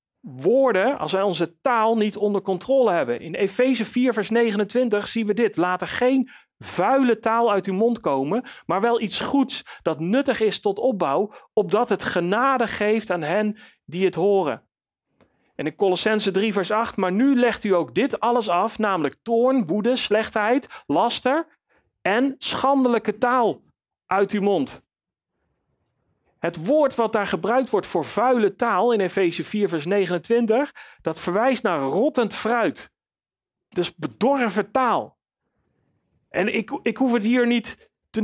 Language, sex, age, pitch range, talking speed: Dutch, male, 40-59, 190-245 Hz, 155 wpm